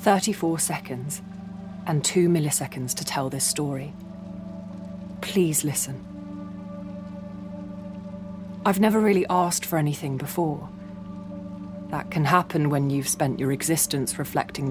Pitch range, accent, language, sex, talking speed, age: 125-190 Hz, British, English, female, 110 wpm, 30-49